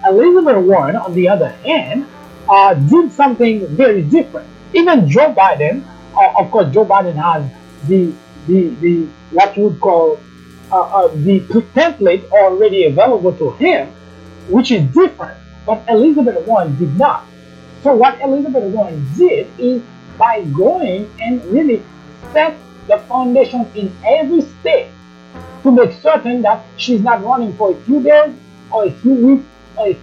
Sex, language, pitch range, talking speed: male, English, 175-265 Hz, 150 wpm